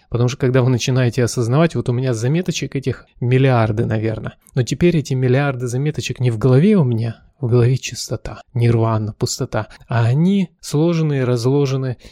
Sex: male